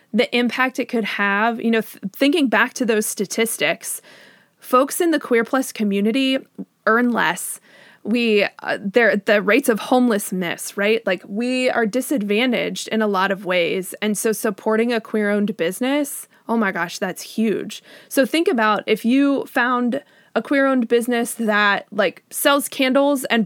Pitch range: 210-255 Hz